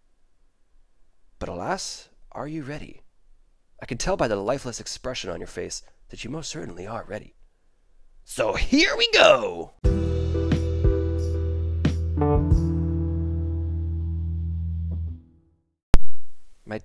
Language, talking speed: English, 95 wpm